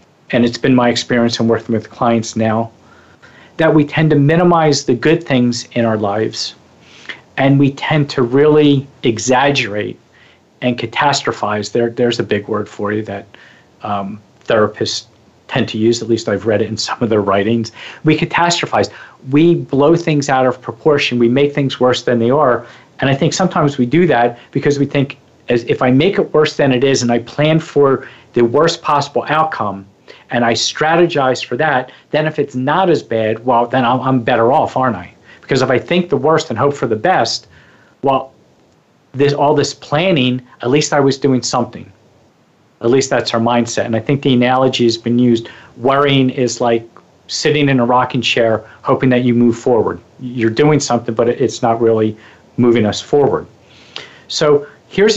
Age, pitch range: 40-59, 115-145 Hz